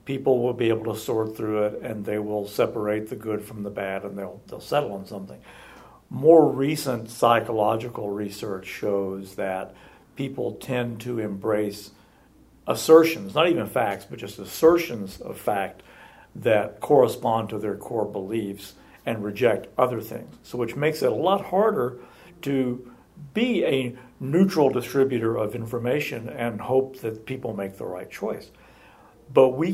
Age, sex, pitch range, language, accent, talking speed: 60-79, male, 105-130 Hz, English, American, 155 wpm